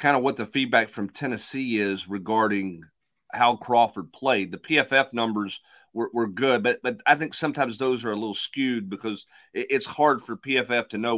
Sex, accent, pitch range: male, American, 110-140 Hz